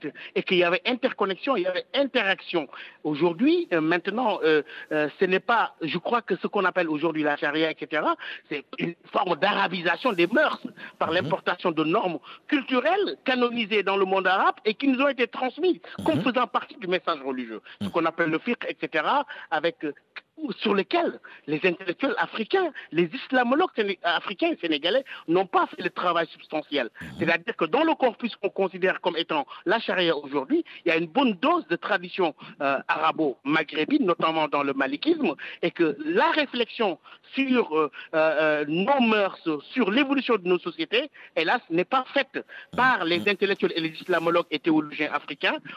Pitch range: 165-255 Hz